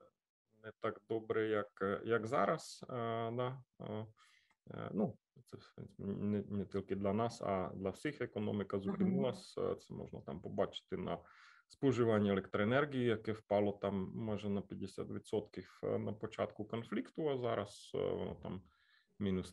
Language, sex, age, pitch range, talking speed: Ukrainian, male, 30-49, 100-120 Hz, 130 wpm